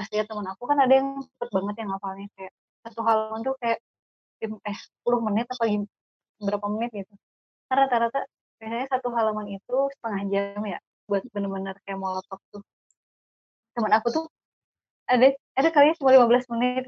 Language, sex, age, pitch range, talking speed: Indonesian, female, 20-39, 200-235 Hz, 165 wpm